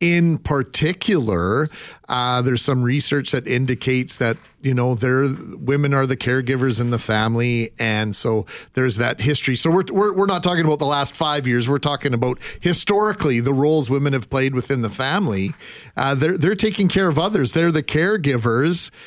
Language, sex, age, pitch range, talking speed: English, male, 40-59, 130-165 Hz, 175 wpm